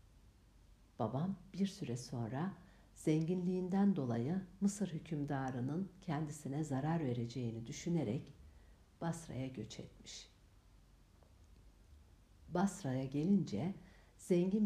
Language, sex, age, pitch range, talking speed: Turkish, female, 60-79, 100-165 Hz, 75 wpm